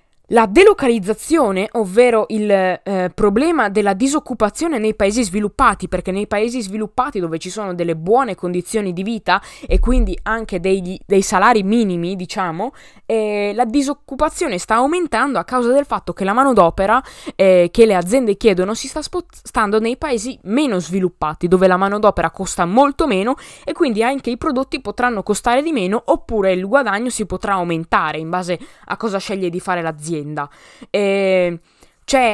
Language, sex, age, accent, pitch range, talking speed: Italian, female, 10-29, native, 185-250 Hz, 160 wpm